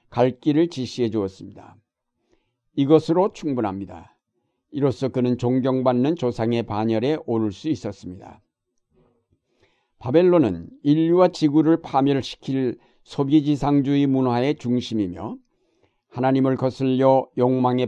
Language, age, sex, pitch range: Korean, 60-79, male, 115-140 Hz